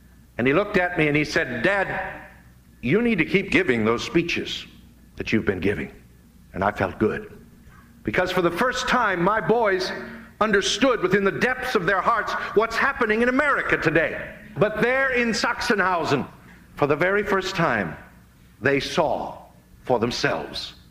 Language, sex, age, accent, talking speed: English, male, 60-79, American, 160 wpm